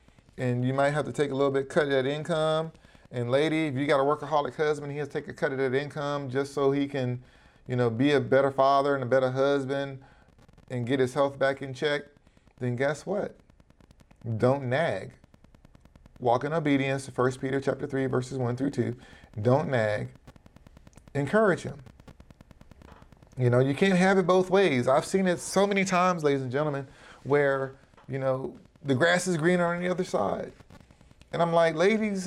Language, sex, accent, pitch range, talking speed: English, male, American, 130-175 Hz, 195 wpm